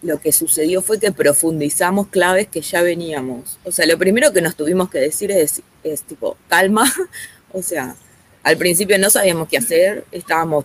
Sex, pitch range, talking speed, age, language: female, 155-200 Hz, 180 wpm, 20-39, Spanish